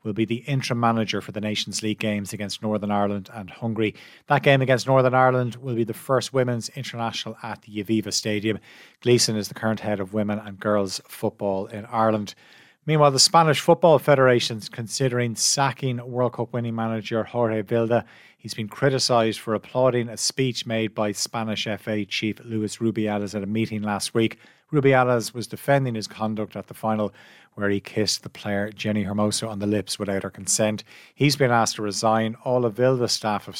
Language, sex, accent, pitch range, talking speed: English, male, Irish, 105-125 Hz, 190 wpm